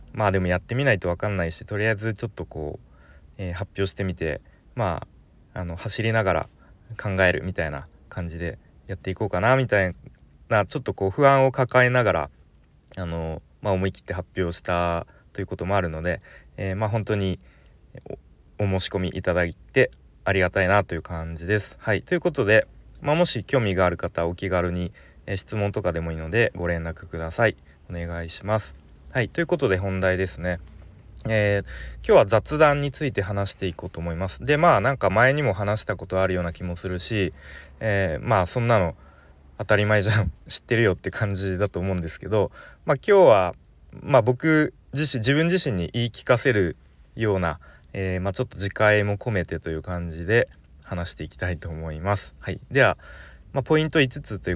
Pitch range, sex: 85-105 Hz, male